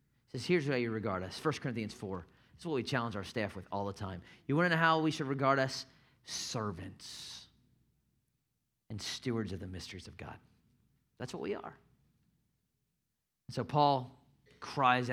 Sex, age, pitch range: male, 30-49, 110-155 Hz